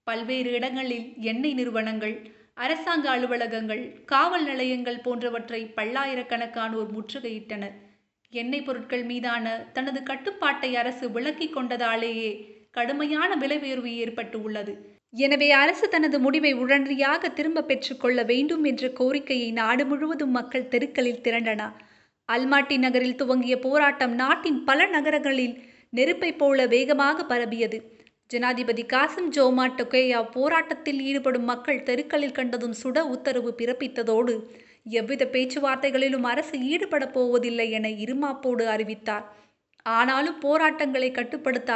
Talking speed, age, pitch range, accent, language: 105 wpm, 20-39, 235-275 Hz, native, Tamil